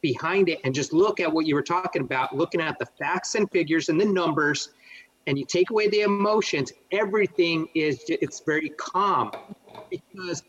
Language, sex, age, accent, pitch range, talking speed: English, male, 30-49, American, 135-180 Hz, 185 wpm